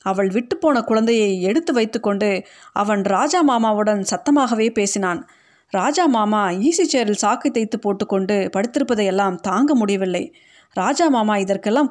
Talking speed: 100 wpm